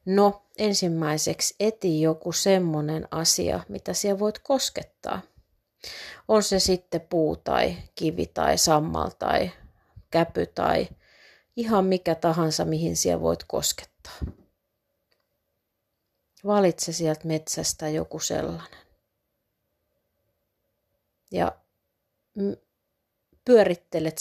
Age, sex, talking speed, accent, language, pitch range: 30-49, female, 85 wpm, native, Finnish, 150-185 Hz